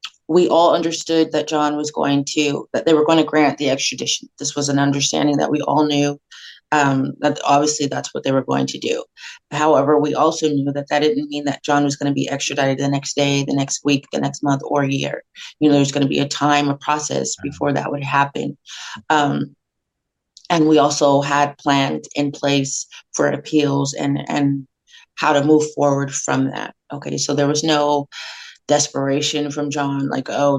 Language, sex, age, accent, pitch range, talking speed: English, female, 30-49, American, 140-155 Hz, 200 wpm